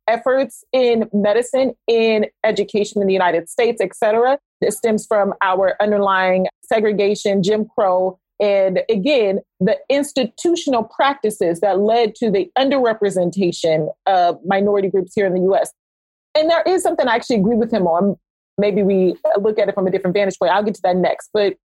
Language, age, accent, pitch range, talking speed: English, 30-49, American, 195-245 Hz, 170 wpm